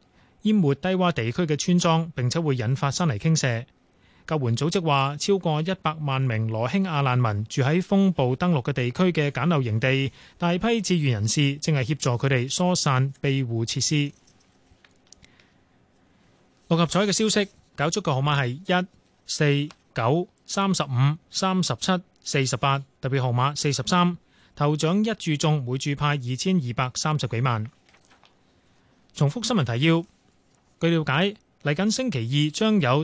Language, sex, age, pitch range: Chinese, male, 20-39, 130-175 Hz